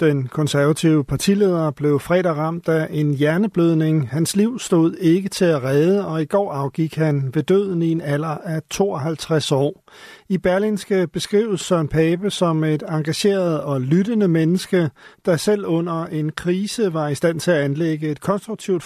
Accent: native